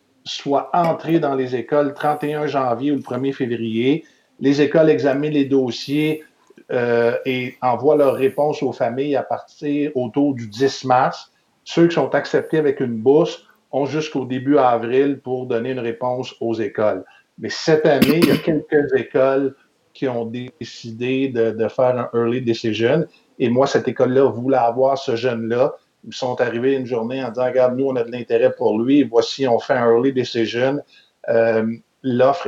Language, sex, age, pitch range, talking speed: French, male, 50-69, 115-135 Hz, 175 wpm